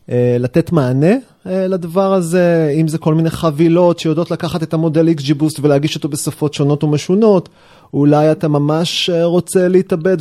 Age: 30-49